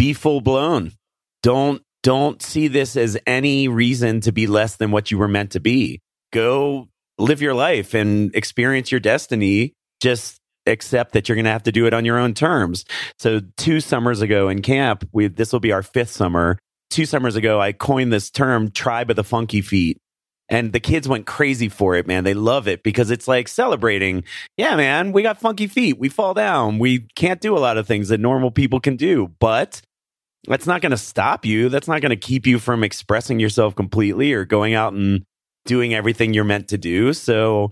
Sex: male